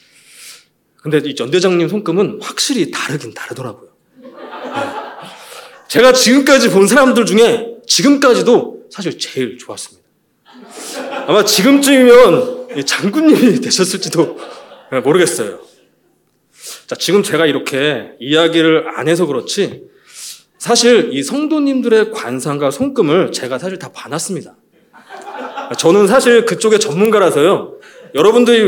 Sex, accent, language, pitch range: male, native, Korean, 170-280 Hz